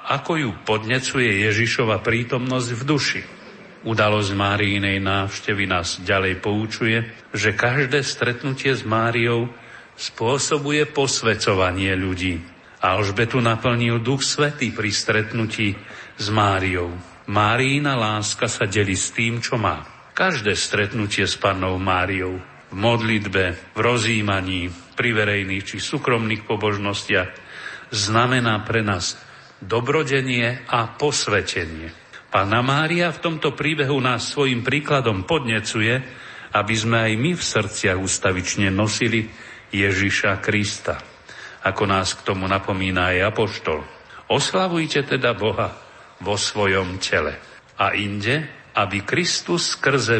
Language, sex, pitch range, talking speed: Slovak, male, 100-125 Hz, 110 wpm